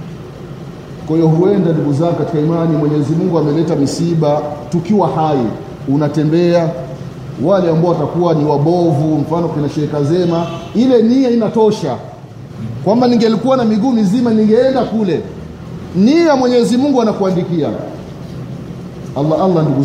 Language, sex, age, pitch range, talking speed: Swahili, male, 30-49, 150-185 Hz, 125 wpm